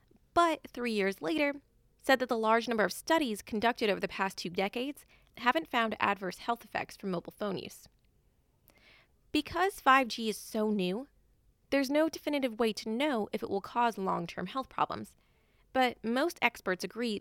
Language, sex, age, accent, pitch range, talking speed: English, female, 20-39, American, 195-265 Hz, 165 wpm